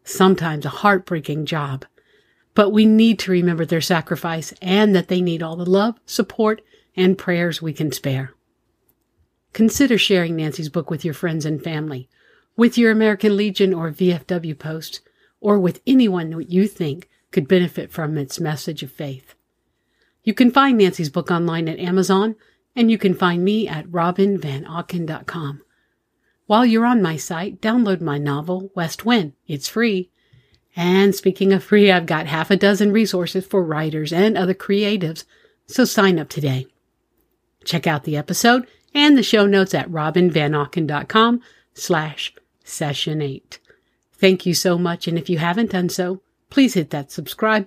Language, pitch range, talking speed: English, 160-205 Hz, 155 wpm